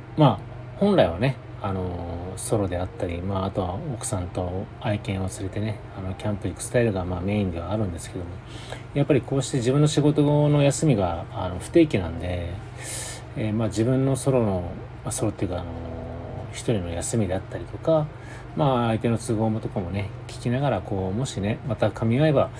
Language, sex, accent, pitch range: Japanese, male, native, 100-125 Hz